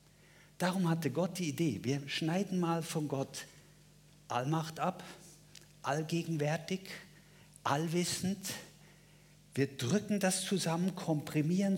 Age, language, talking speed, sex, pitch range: 50-69, German, 95 wpm, male, 135-175 Hz